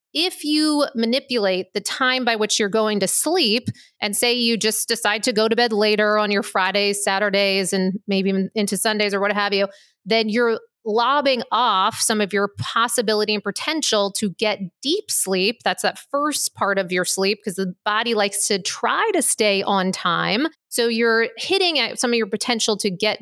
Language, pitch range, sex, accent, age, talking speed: English, 200-245 Hz, female, American, 30-49, 190 wpm